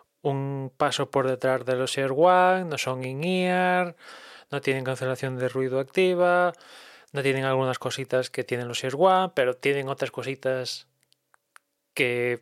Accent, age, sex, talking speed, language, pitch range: Spanish, 20-39, male, 150 wpm, Spanish, 125-165 Hz